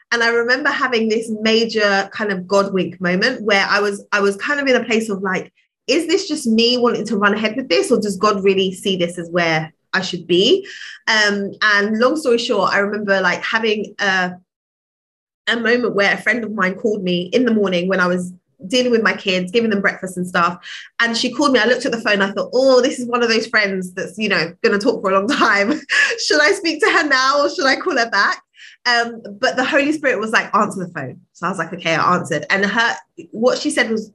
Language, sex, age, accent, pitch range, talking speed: English, female, 20-39, British, 190-240 Hz, 250 wpm